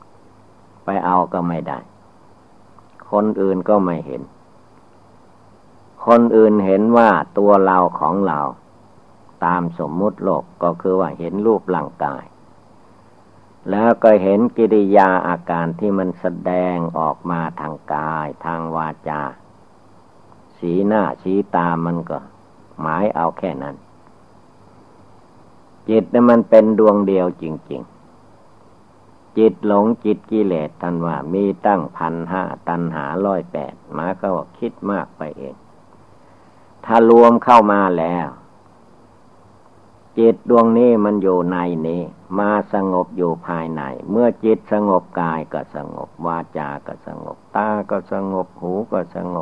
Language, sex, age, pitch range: Thai, male, 60-79, 85-110 Hz